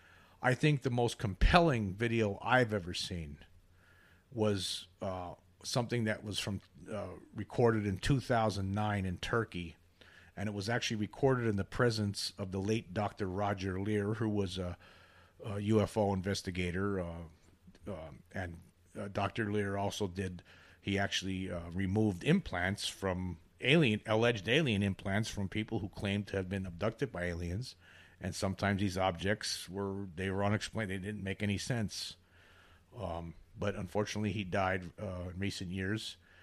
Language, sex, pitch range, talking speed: English, male, 90-110 Hz, 150 wpm